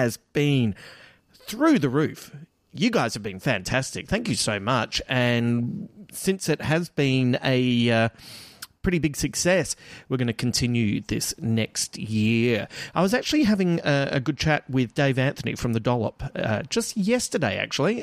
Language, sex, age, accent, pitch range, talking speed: English, male, 30-49, Australian, 120-150 Hz, 165 wpm